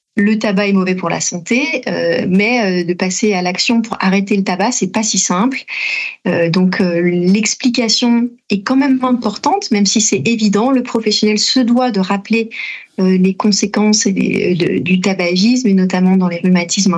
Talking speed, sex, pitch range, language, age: 160 wpm, female, 185-225 Hz, French, 30-49